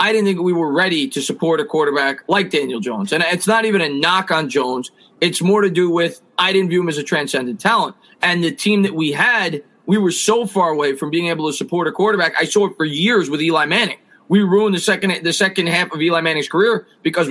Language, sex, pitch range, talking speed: English, male, 155-190 Hz, 250 wpm